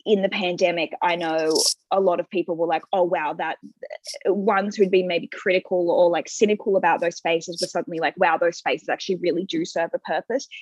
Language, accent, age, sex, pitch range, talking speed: English, Australian, 20-39, female, 175-205 Hz, 215 wpm